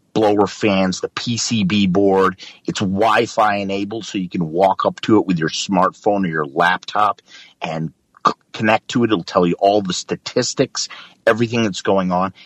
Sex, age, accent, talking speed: male, 50-69, American, 170 wpm